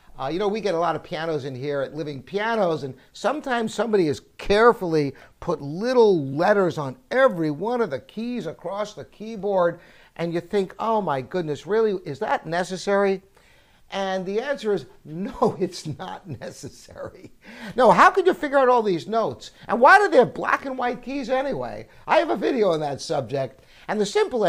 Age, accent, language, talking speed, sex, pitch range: 60-79, American, English, 190 wpm, male, 160-235 Hz